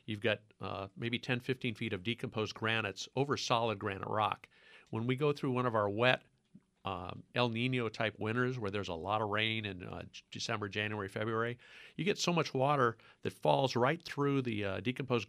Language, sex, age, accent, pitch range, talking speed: English, male, 50-69, American, 110-130 Hz, 190 wpm